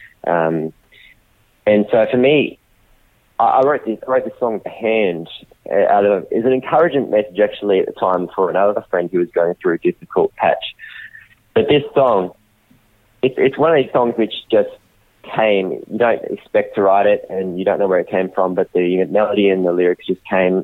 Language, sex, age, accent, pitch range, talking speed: English, male, 20-39, Australian, 85-110 Hz, 205 wpm